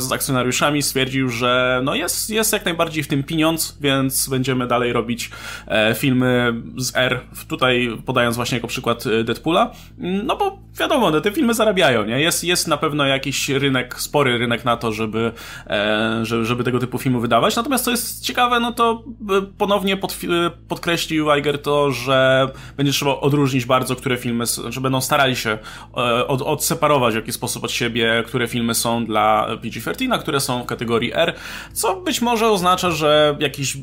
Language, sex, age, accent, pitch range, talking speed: Polish, male, 20-39, native, 120-155 Hz, 175 wpm